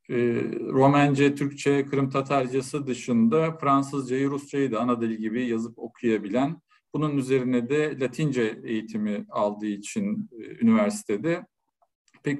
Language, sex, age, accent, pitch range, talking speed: Turkish, male, 50-69, native, 120-165 Hz, 100 wpm